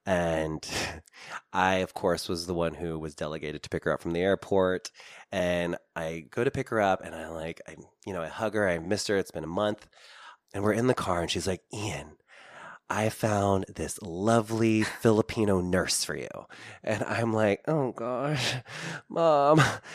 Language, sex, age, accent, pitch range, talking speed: English, male, 20-39, American, 85-110 Hz, 190 wpm